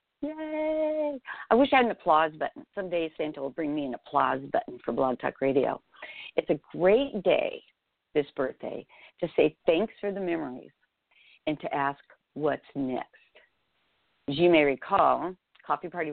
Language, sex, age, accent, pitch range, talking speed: English, female, 50-69, American, 150-205 Hz, 160 wpm